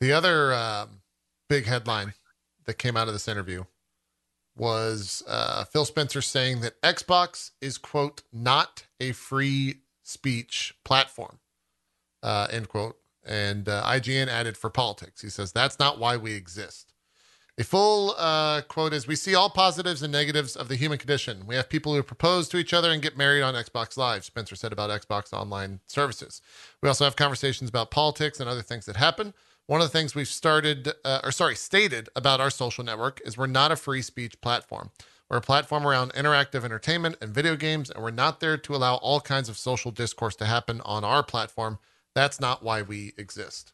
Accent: American